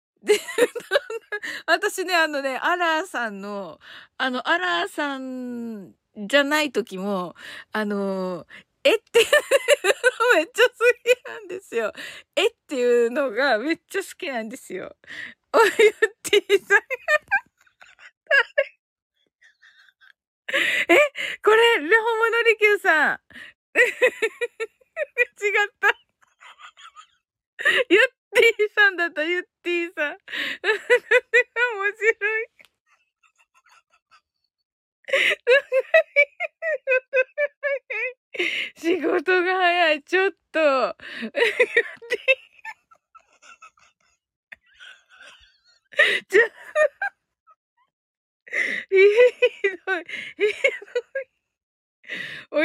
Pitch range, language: 315-460 Hz, Japanese